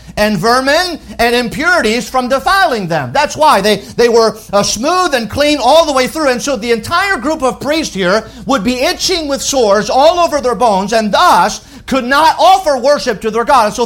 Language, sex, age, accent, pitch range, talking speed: English, male, 50-69, American, 155-255 Hz, 210 wpm